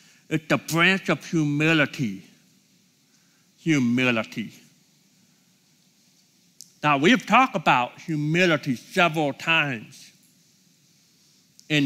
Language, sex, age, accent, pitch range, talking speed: English, male, 60-79, American, 150-200 Hz, 70 wpm